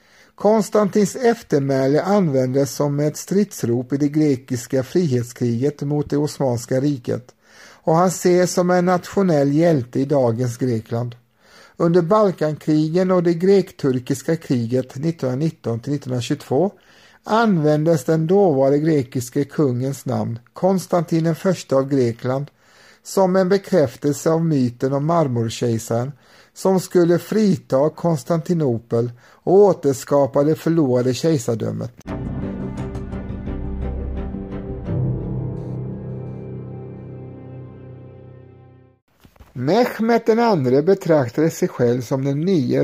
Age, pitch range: 60-79, 125-175 Hz